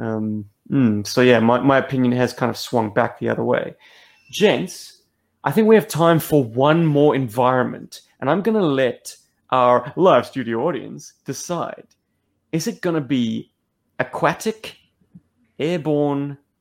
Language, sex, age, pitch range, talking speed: English, male, 30-49, 125-165 Hz, 150 wpm